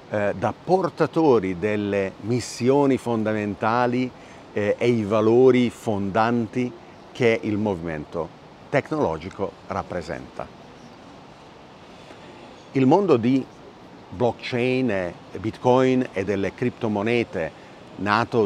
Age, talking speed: 50-69, 75 wpm